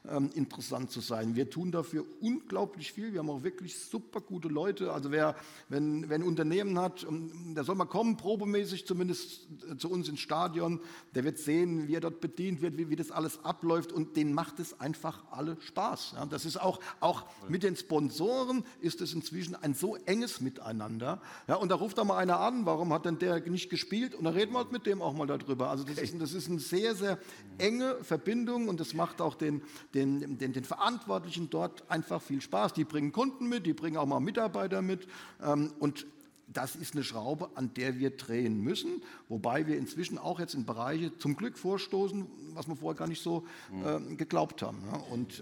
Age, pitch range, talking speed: 50-69, 140-185 Hz, 200 wpm